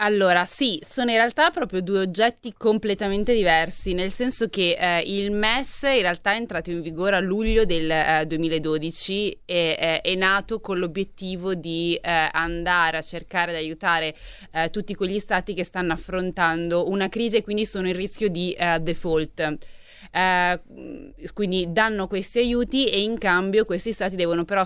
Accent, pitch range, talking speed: native, 170-210 Hz, 165 wpm